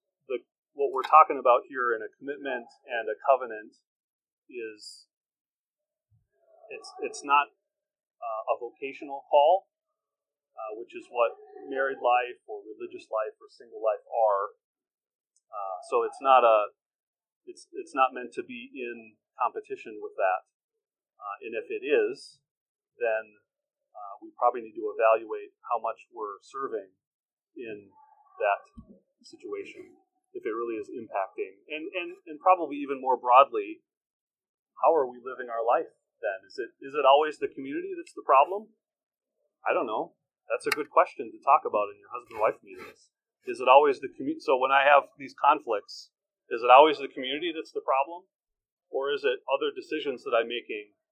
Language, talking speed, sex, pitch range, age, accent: English, 160 wpm, male, 300-425 Hz, 30-49, American